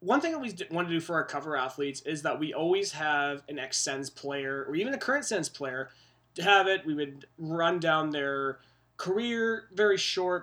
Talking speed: 205 wpm